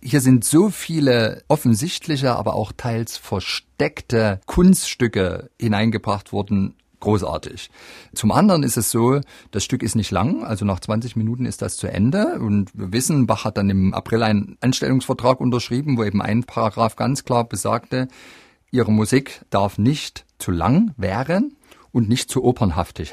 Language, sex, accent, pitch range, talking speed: German, male, German, 100-130 Hz, 155 wpm